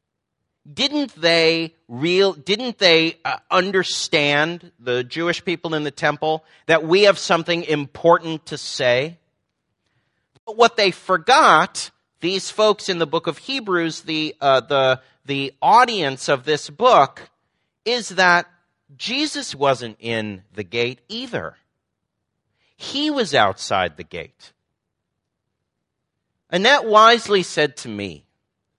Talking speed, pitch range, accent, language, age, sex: 120 wpm, 140-205 Hz, American, English, 40-59, male